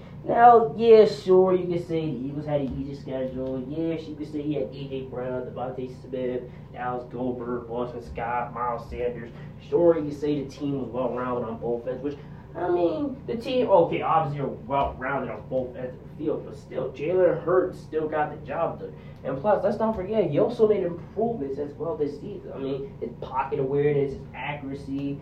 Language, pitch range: English, 130-155 Hz